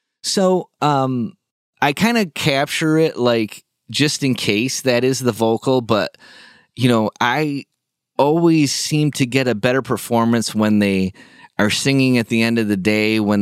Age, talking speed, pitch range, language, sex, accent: 30-49, 165 wpm, 105-130 Hz, English, male, American